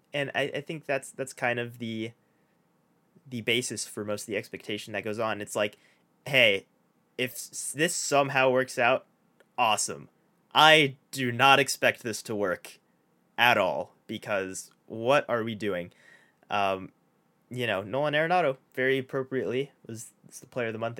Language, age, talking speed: English, 20-39, 160 wpm